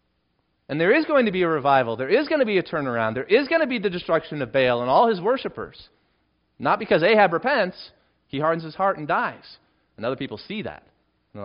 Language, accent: English, American